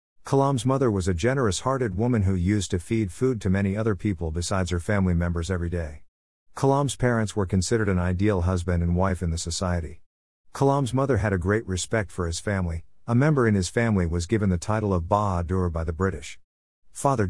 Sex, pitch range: male, 90-120 Hz